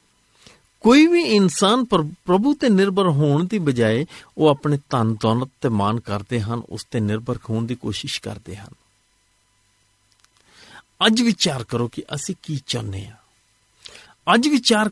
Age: 50-69